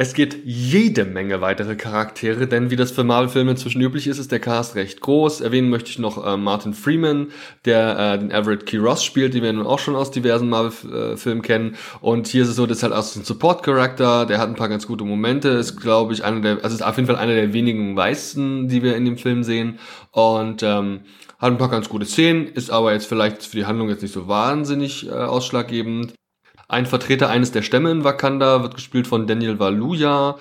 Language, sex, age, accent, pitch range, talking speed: German, male, 20-39, German, 110-135 Hz, 225 wpm